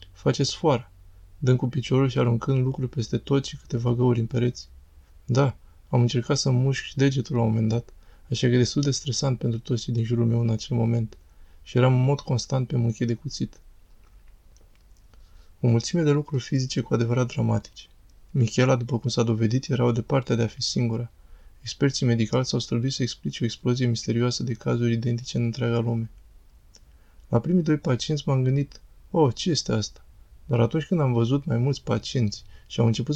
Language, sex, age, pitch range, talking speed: Romanian, male, 20-39, 110-130 Hz, 190 wpm